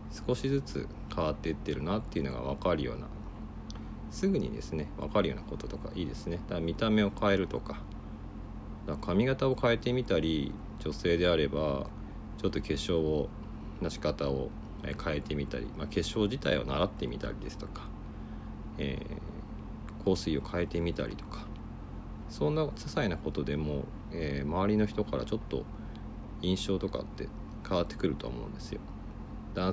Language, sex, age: Japanese, male, 50-69